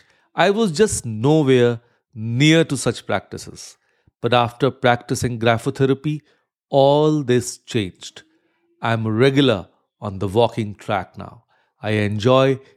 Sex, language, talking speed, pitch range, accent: male, English, 115 wpm, 105-135 Hz, Indian